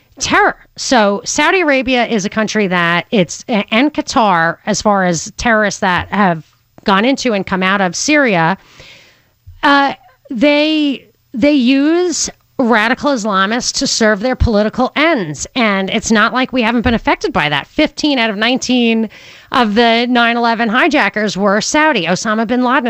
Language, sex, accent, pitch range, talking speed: English, female, American, 205-270 Hz, 150 wpm